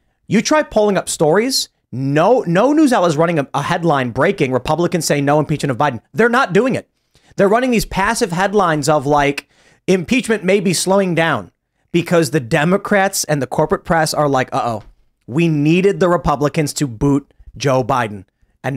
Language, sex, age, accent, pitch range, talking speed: English, male, 30-49, American, 140-195 Hz, 180 wpm